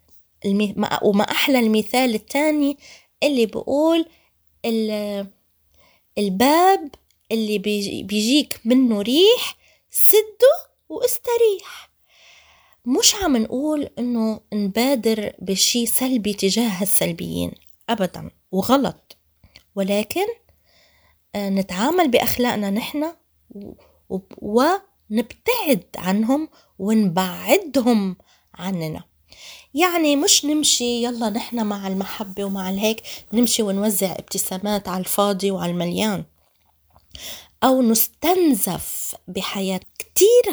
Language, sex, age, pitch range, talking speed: Arabic, female, 20-39, 195-275 Hz, 75 wpm